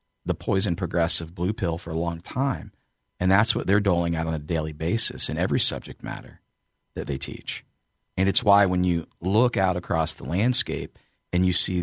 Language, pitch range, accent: English, 80-105 Hz, American